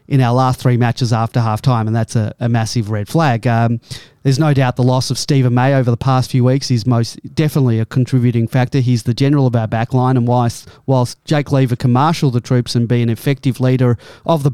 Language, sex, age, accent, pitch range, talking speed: English, male, 30-49, Australian, 120-135 Hz, 235 wpm